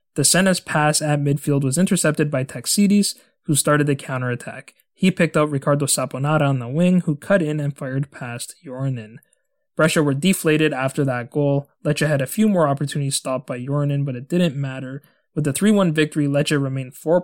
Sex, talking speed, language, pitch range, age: male, 190 wpm, English, 135-165 Hz, 20-39